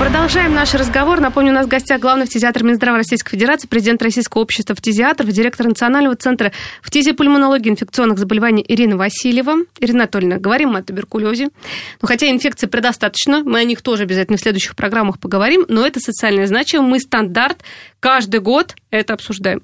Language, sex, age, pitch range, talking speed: Russian, female, 20-39, 220-280 Hz, 160 wpm